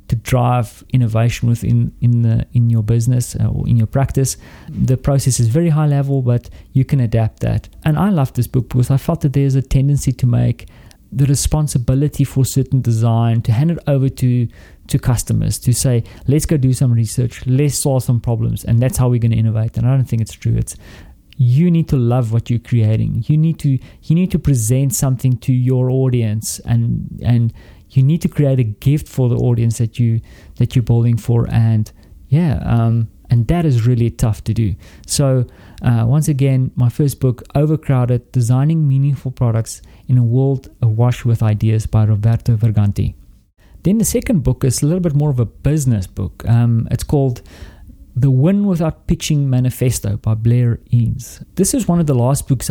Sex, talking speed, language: male, 195 wpm, English